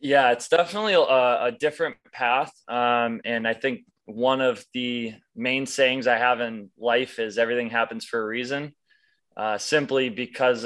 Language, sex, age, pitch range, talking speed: English, male, 20-39, 110-135 Hz, 165 wpm